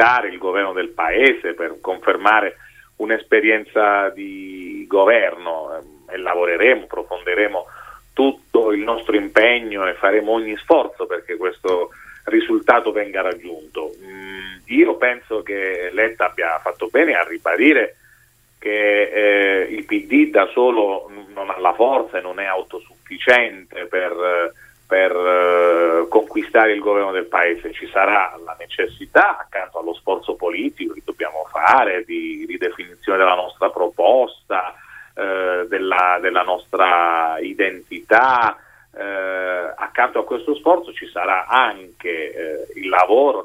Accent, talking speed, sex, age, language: native, 115 wpm, male, 40-59, Italian